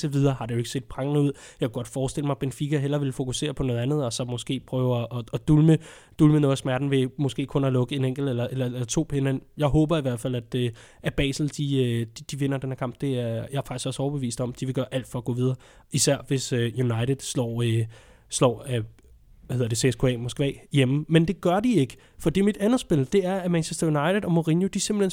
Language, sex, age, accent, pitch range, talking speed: Danish, male, 20-39, native, 130-165 Hz, 255 wpm